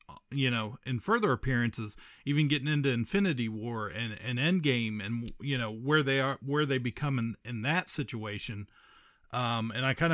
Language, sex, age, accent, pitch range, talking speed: English, male, 40-59, American, 110-150 Hz, 180 wpm